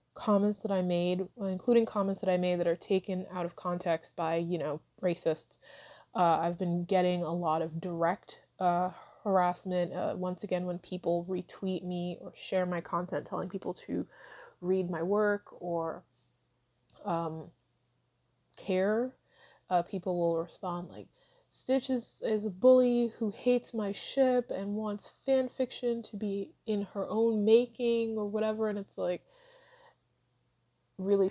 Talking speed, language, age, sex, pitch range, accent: 150 wpm, English, 20-39, female, 175-210 Hz, American